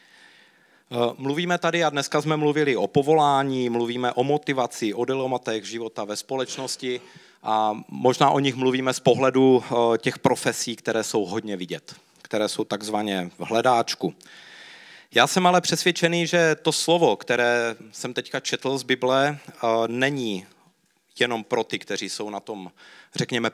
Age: 40-59